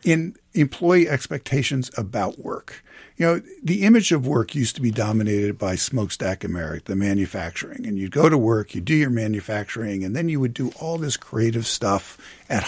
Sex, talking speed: male, 185 wpm